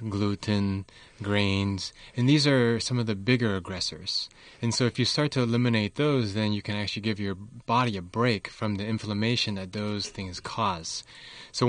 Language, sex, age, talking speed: English, male, 20-39, 180 wpm